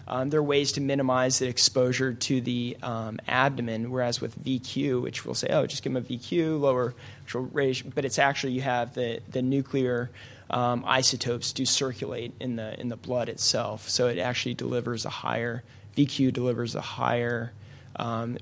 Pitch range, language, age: 115-130 Hz, English, 20-39